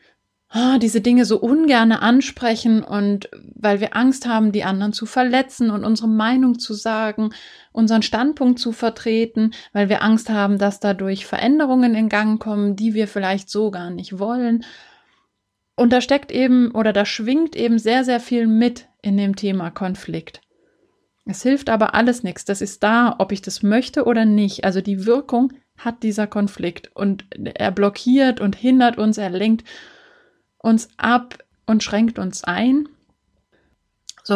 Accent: German